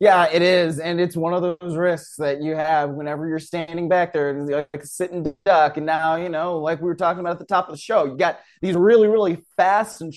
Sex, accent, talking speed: male, American, 255 wpm